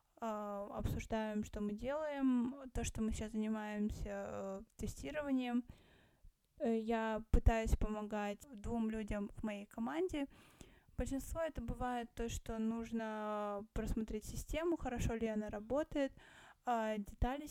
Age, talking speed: 20-39, 105 wpm